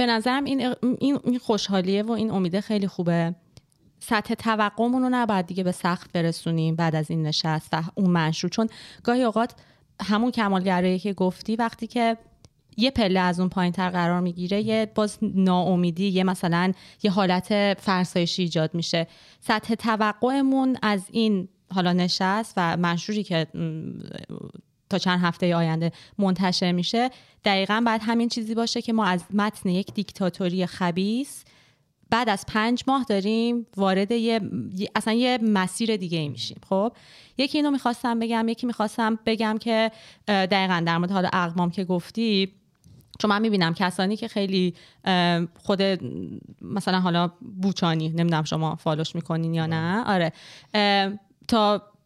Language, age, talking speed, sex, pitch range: Persian, 30-49, 150 wpm, female, 180-225 Hz